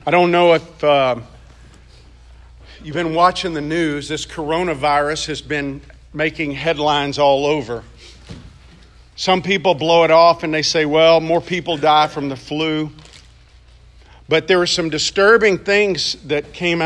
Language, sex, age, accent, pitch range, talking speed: English, male, 50-69, American, 130-165 Hz, 145 wpm